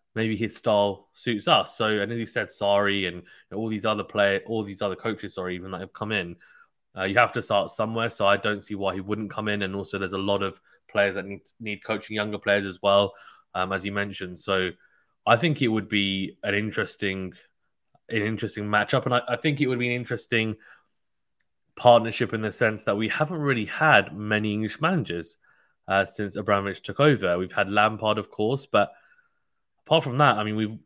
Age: 20-39